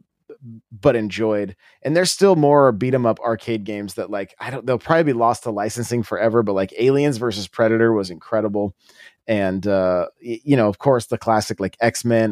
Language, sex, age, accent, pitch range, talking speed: English, male, 30-49, American, 105-130 Hz, 190 wpm